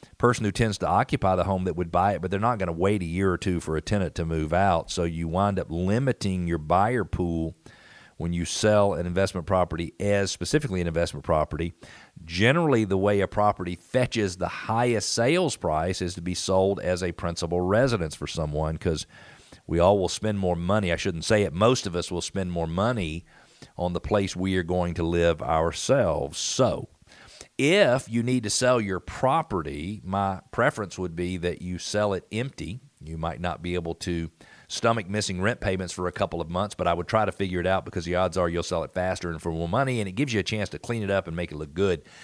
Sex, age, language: male, 50-69, English